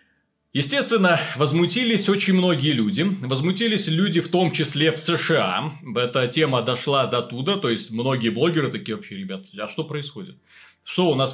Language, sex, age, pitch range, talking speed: Russian, male, 30-49, 120-165 Hz, 160 wpm